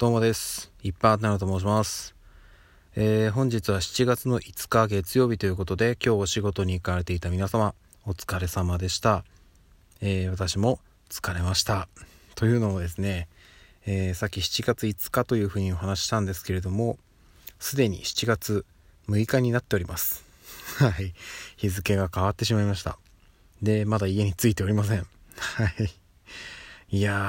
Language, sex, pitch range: Japanese, male, 90-110 Hz